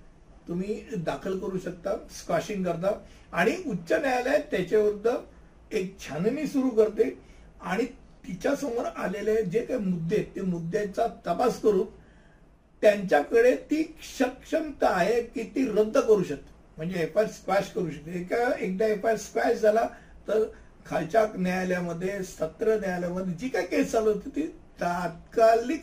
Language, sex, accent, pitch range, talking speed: Hindi, male, native, 180-225 Hz, 55 wpm